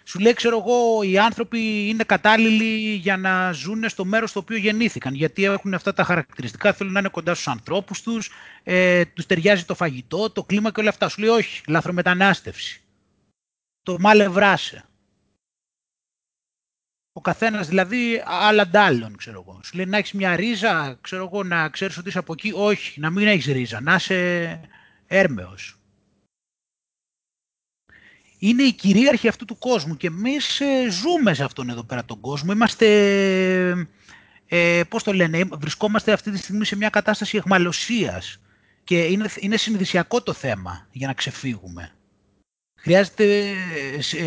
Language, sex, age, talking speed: Greek, male, 30-49, 155 wpm